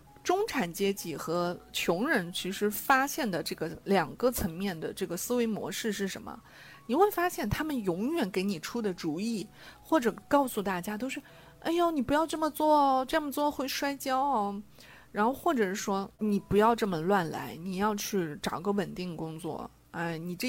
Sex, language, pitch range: female, Chinese, 185-240 Hz